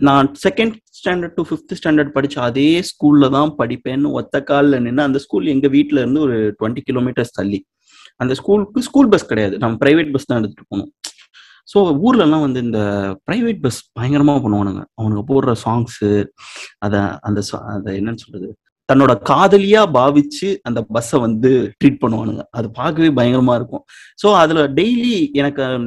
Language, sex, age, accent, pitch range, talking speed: Tamil, male, 30-49, native, 120-175 Hz, 150 wpm